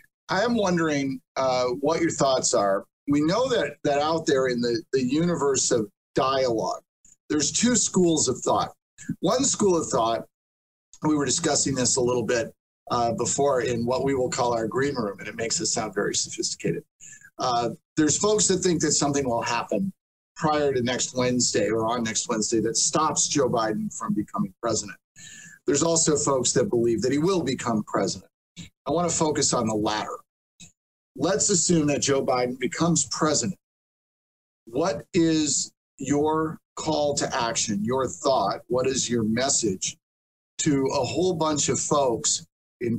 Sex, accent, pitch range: male, American, 125-160 Hz